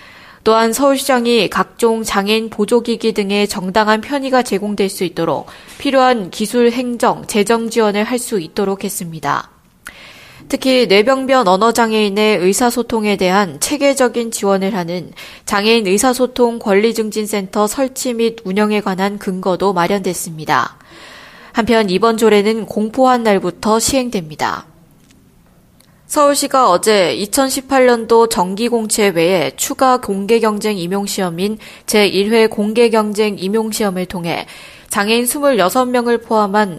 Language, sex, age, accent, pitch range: Korean, female, 20-39, native, 200-240 Hz